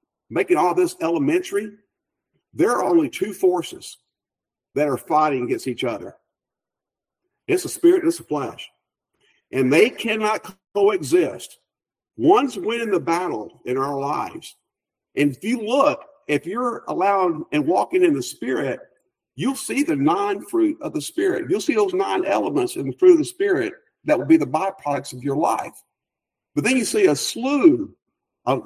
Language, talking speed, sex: English, 165 wpm, male